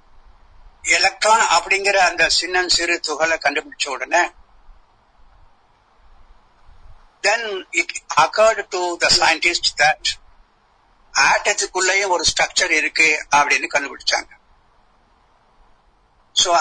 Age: 60-79